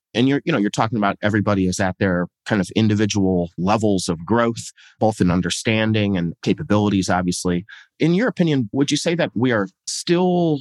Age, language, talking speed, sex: 30-49, English, 185 wpm, male